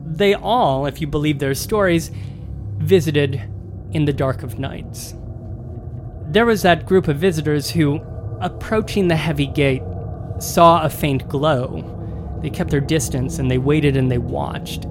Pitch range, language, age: 115-170 Hz, English, 30-49